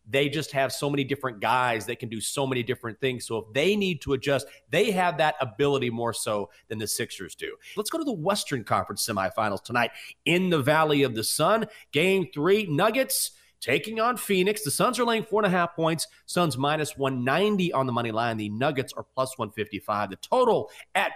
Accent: American